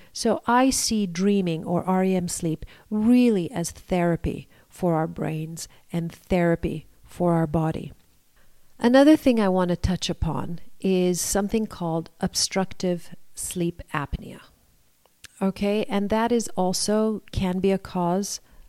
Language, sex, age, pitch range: English, female, 40-59, 170-210 Hz